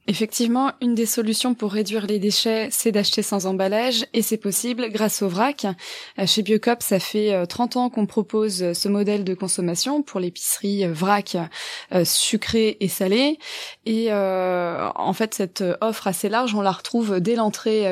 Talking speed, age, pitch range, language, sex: 165 wpm, 20-39, 190-225 Hz, French, female